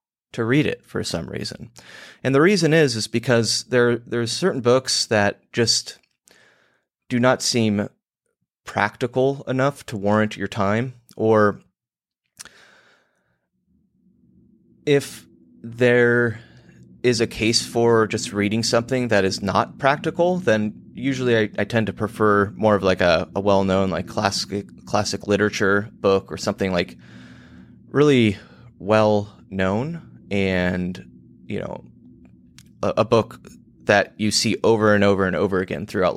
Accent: American